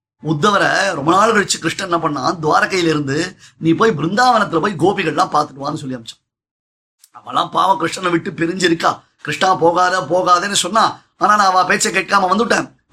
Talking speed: 120 wpm